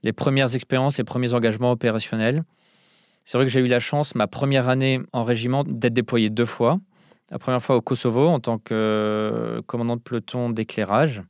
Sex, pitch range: male, 110-135 Hz